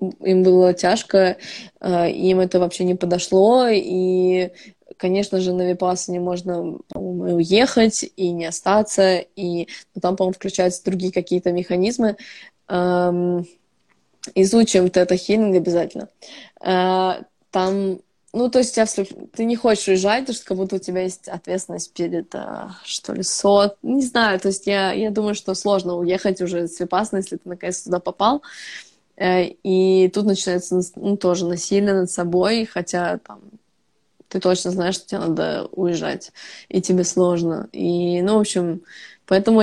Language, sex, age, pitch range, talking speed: Russian, female, 20-39, 180-200 Hz, 150 wpm